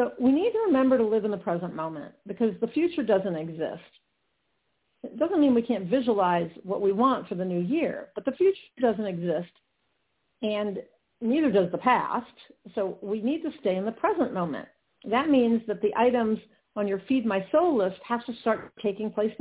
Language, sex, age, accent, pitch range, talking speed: English, female, 50-69, American, 200-275 Hz, 200 wpm